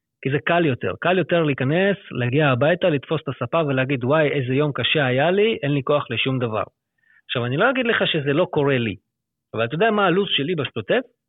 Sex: male